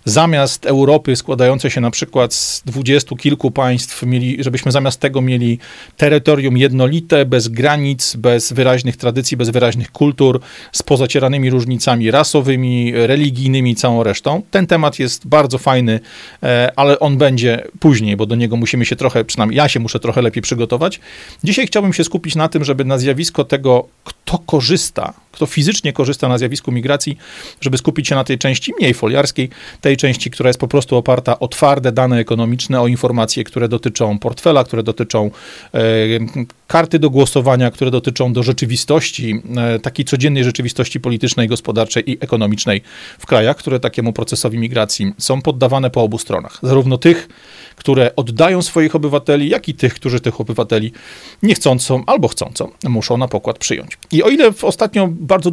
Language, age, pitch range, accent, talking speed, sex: Polish, 40-59, 120-145 Hz, native, 160 wpm, male